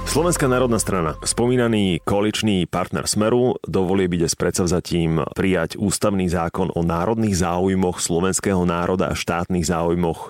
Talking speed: 130 wpm